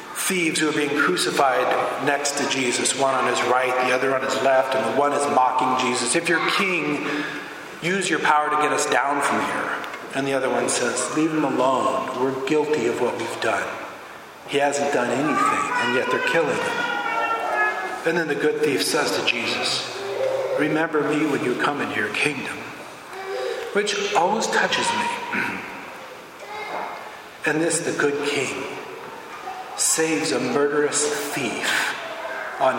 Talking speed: 160 wpm